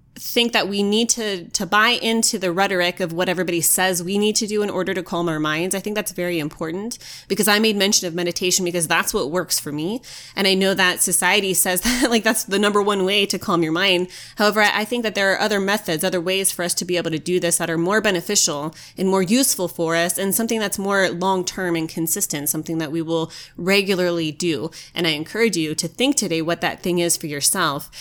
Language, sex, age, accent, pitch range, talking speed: English, female, 20-39, American, 165-200 Hz, 240 wpm